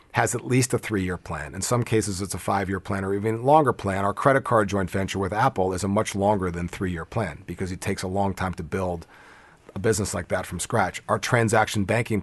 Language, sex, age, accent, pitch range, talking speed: English, male, 40-59, American, 95-110 Hz, 235 wpm